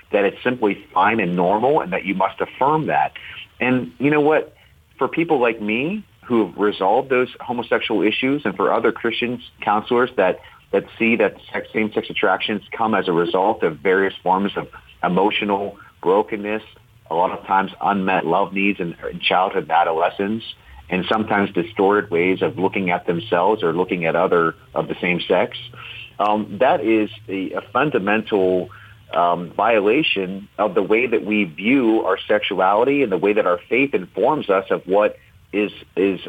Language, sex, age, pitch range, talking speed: English, male, 40-59, 95-120 Hz, 170 wpm